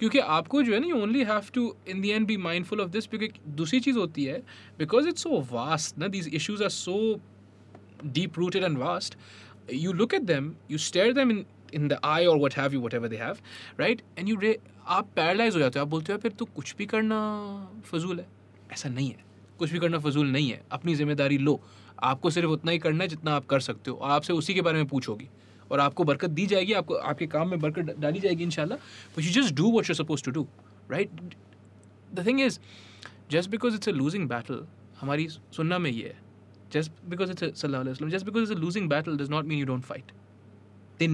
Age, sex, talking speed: 20-39, male, 140 wpm